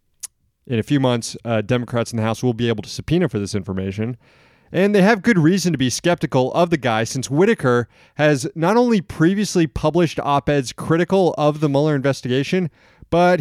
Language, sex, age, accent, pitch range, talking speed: English, male, 30-49, American, 115-160 Hz, 190 wpm